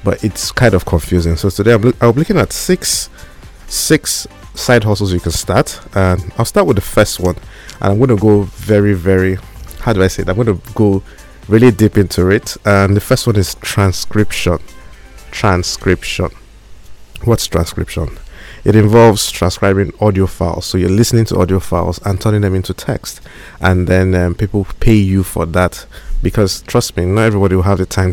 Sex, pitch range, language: male, 90-110 Hz, English